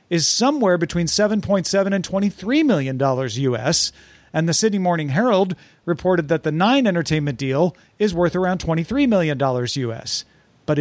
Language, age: English, 40-59